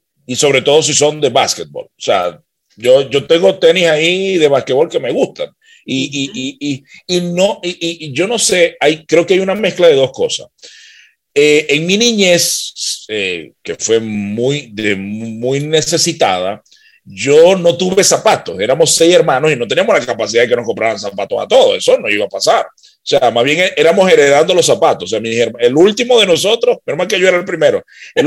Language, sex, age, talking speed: Spanish, male, 40-59, 205 wpm